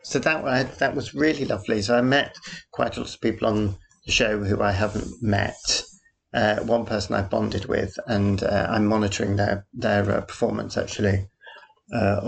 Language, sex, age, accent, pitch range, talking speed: English, male, 40-59, British, 100-110 Hz, 180 wpm